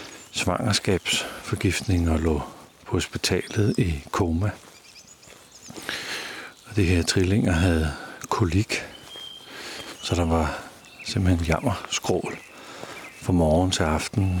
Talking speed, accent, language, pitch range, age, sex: 95 wpm, native, Danish, 85-105 Hz, 60-79, male